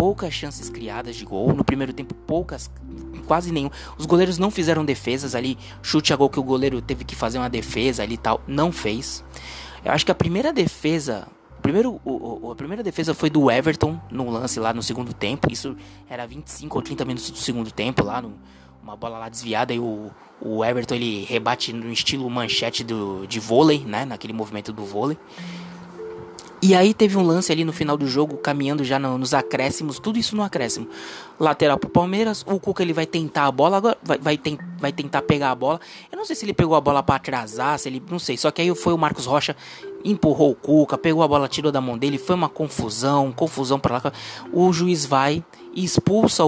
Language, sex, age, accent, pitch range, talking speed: Portuguese, male, 20-39, Brazilian, 120-160 Hz, 215 wpm